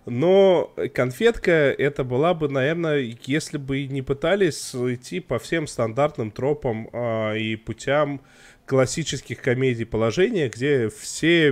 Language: Russian